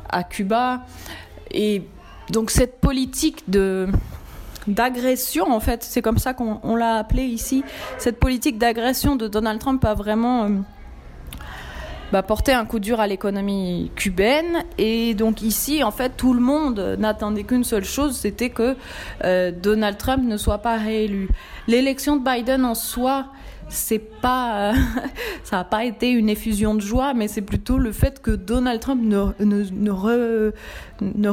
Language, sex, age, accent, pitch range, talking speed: French, female, 20-39, French, 195-245 Hz, 160 wpm